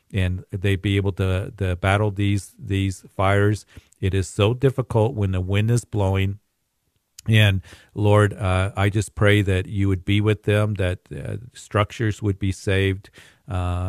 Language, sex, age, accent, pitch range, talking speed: English, male, 50-69, American, 95-105 Hz, 165 wpm